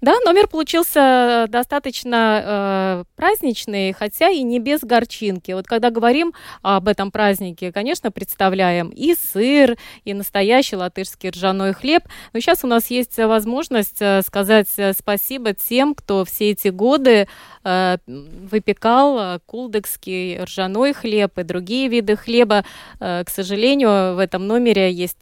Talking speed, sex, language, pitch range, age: 130 wpm, female, Russian, 190-235 Hz, 20-39